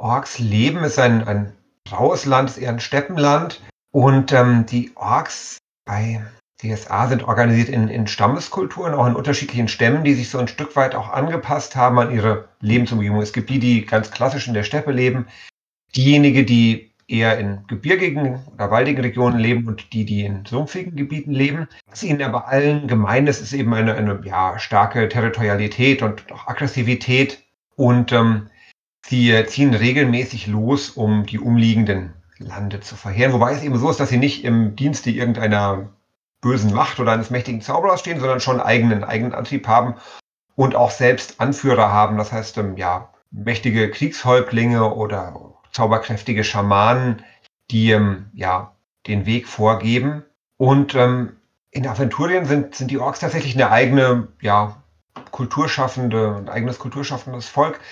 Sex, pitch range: male, 110-135 Hz